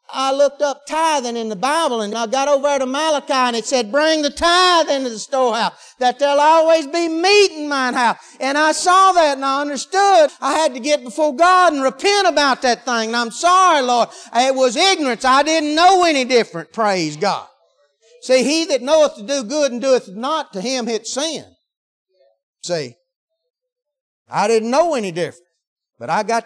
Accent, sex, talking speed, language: American, male, 195 wpm, English